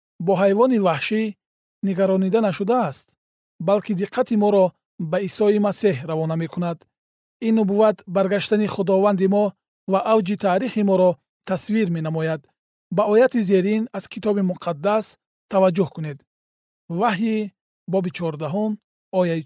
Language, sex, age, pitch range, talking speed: Persian, male, 40-59, 170-205 Hz, 115 wpm